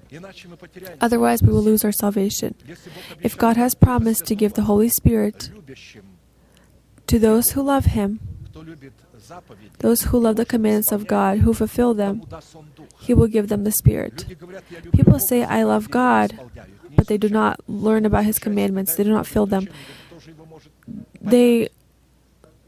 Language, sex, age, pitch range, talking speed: English, female, 20-39, 150-225 Hz, 145 wpm